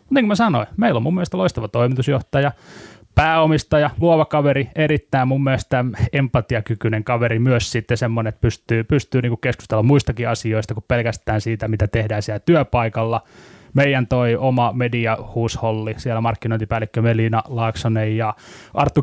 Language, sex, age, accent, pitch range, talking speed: Finnish, male, 20-39, native, 110-135 Hz, 140 wpm